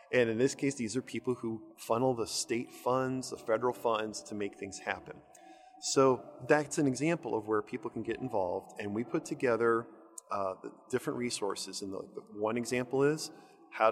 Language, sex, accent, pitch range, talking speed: English, male, American, 115-165 Hz, 190 wpm